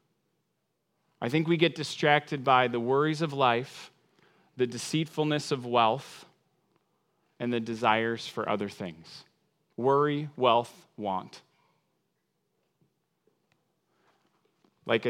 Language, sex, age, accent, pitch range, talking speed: English, male, 30-49, American, 140-170 Hz, 95 wpm